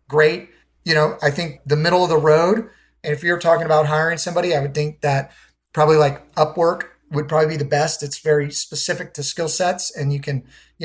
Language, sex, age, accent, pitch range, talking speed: English, male, 30-49, American, 150-185 Hz, 210 wpm